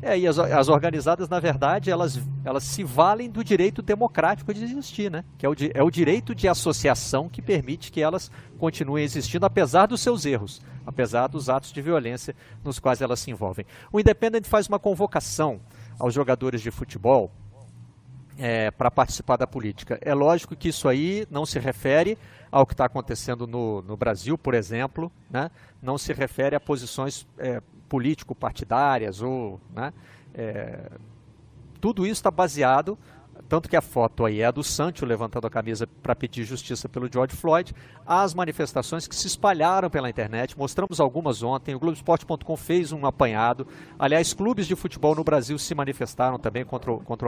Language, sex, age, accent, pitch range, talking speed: Portuguese, male, 50-69, Brazilian, 120-165 Hz, 170 wpm